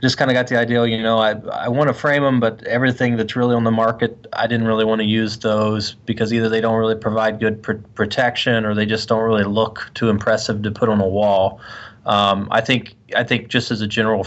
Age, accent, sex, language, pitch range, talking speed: 20-39, American, male, English, 105-115 Hz, 250 wpm